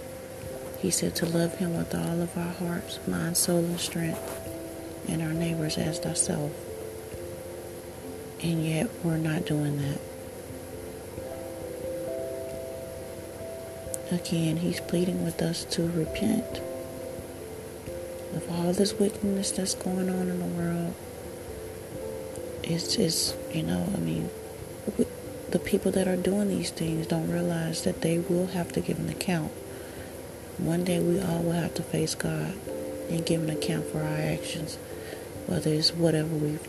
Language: English